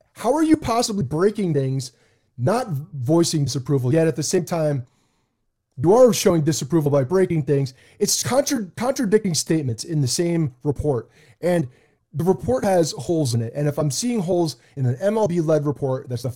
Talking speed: 170 wpm